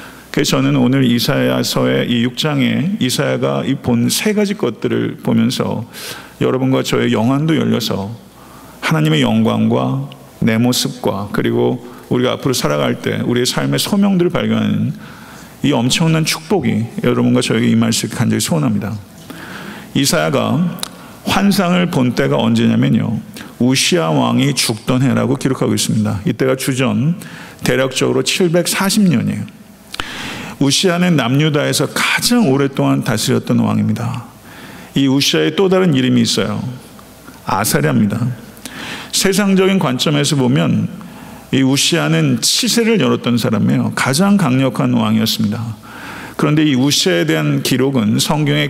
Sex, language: male, Korean